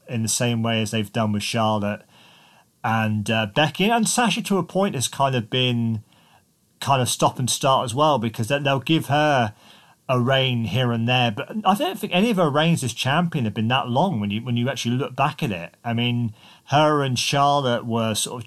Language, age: English, 40-59